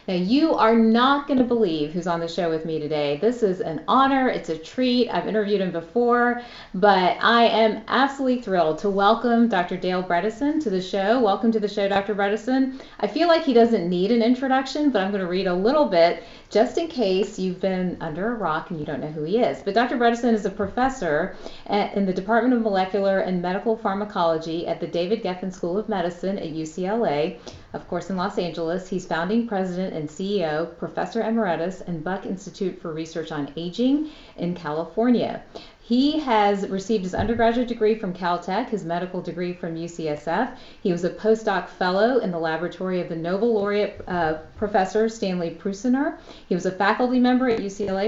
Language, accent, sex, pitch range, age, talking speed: English, American, female, 175-225 Hz, 30-49, 195 wpm